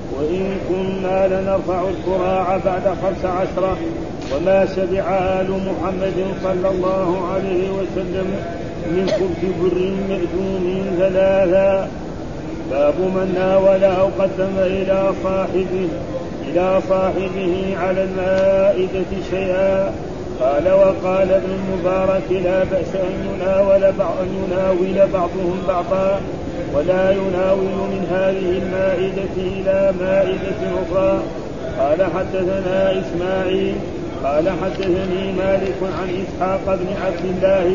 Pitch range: 185-190 Hz